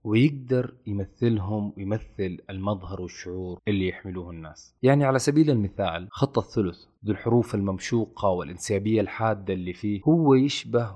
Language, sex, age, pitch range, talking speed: Arabic, male, 20-39, 95-120 Hz, 125 wpm